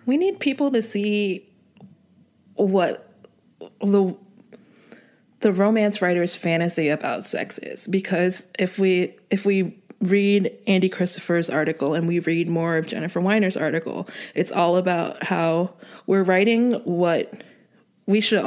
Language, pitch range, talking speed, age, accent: English, 165-205 Hz, 130 wpm, 20-39, American